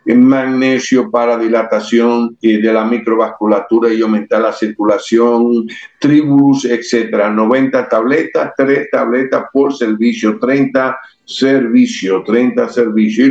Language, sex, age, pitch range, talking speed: Spanish, male, 60-79, 115-135 Hz, 105 wpm